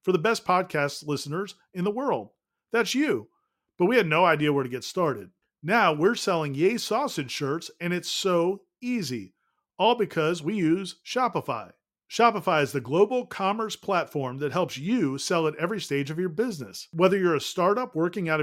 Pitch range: 155-205 Hz